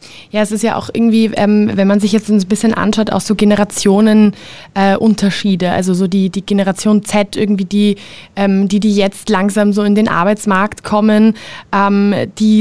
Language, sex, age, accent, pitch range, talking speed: German, female, 20-39, German, 185-215 Hz, 180 wpm